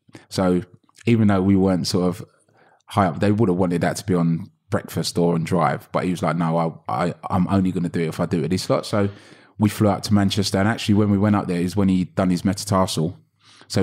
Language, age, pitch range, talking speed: English, 20-39, 85-100 Hz, 265 wpm